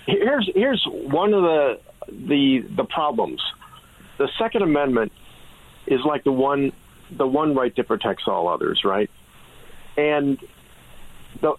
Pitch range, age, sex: 120-150 Hz, 50-69, male